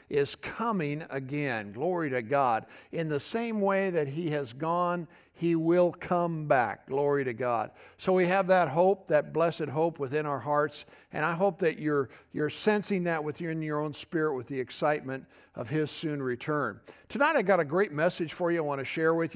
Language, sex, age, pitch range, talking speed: English, male, 60-79, 145-175 Hz, 200 wpm